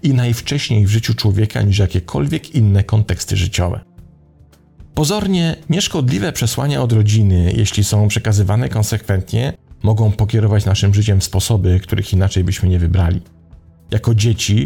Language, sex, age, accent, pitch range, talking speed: Polish, male, 40-59, native, 95-115 Hz, 125 wpm